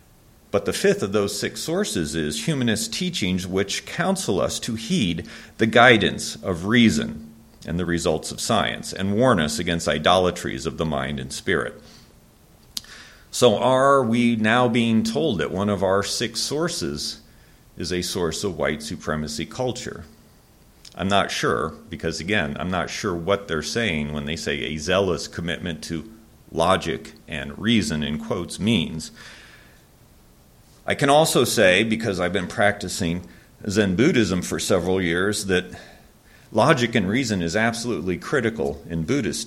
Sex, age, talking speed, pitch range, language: male, 40-59, 150 wpm, 85-115 Hz, English